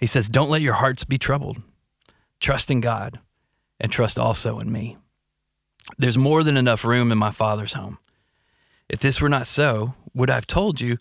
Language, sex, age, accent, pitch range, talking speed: English, male, 30-49, American, 115-150 Hz, 190 wpm